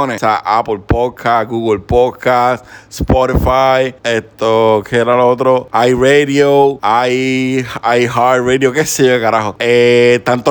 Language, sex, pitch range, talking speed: Spanish, male, 125-140 Hz, 125 wpm